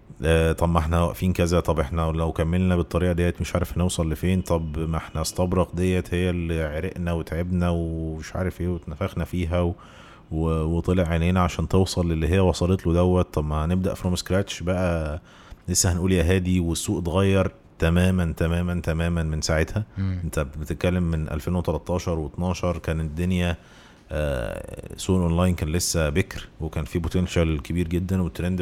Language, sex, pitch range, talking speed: Arabic, male, 80-90 Hz, 155 wpm